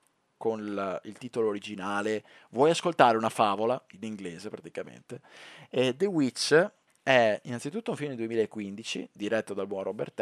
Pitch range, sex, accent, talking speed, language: 105-155 Hz, male, native, 140 wpm, Italian